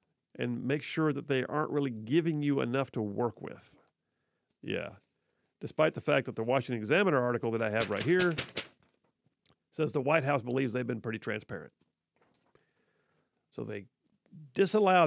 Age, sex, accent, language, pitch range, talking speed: 50-69, male, American, English, 125-155 Hz, 155 wpm